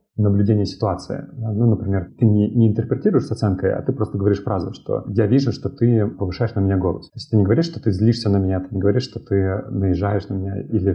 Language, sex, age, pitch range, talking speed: Russian, male, 30-49, 95-115 Hz, 235 wpm